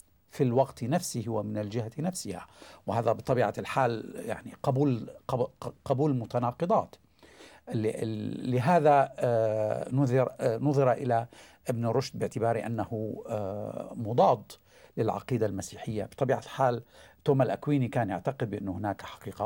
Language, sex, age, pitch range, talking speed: Arabic, male, 50-69, 115-140 Hz, 100 wpm